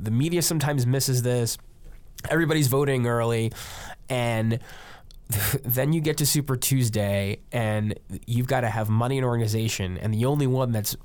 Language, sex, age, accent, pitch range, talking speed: English, male, 20-39, American, 110-150 Hz, 160 wpm